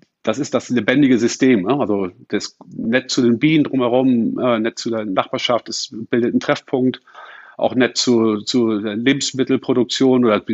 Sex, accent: male, German